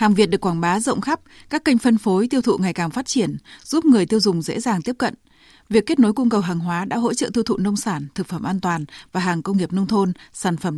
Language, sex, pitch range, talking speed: Vietnamese, female, 175-235 Hz, 285 wpm